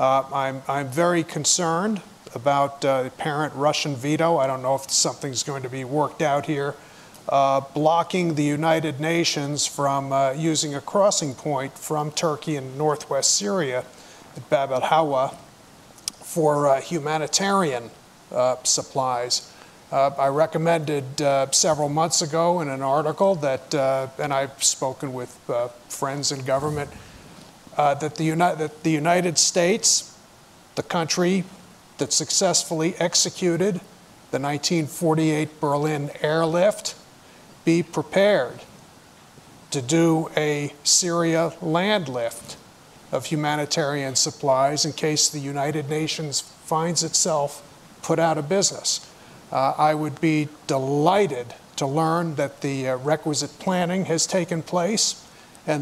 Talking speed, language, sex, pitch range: 125 wpm, English, male, 140-165 Hz